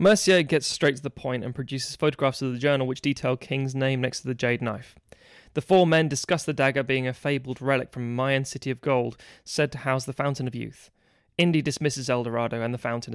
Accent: British